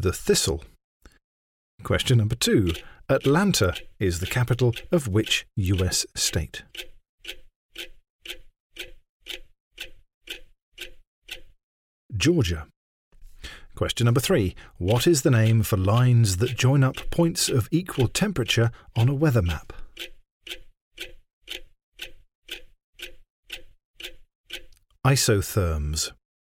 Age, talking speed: 50-69, 80 wpm